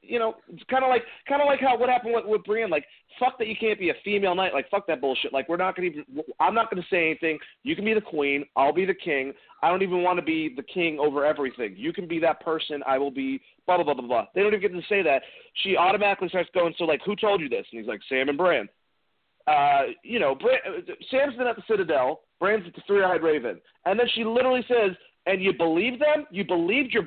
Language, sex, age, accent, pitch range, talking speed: English, male, 40-59, American, 155-230 Hz, 265 wpm